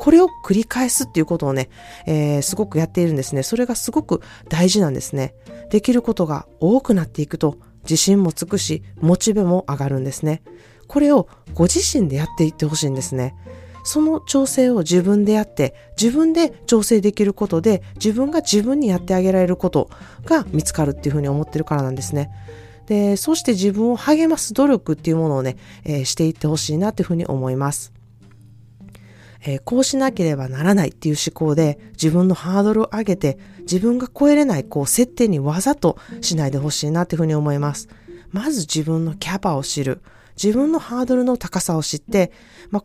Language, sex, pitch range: Japanese, female, 145-225 Hz